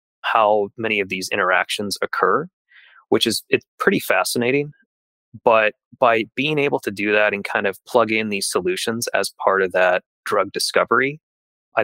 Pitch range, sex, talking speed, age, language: 95-130 Hz, male, 160 wpm, 20-39, English